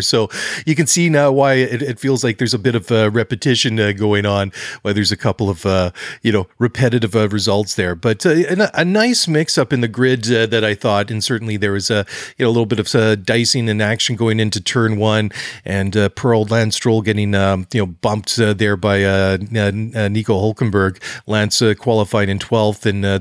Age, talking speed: 40-59, 235 wpm